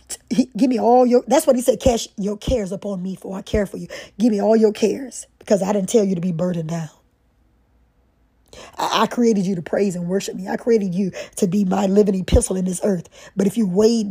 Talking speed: 245 wpm